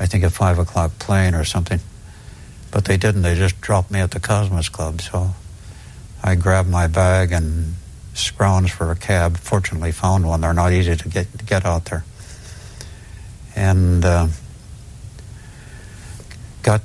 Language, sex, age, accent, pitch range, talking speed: English, male, 60-79, American, 85-105 Hz, 155 wpm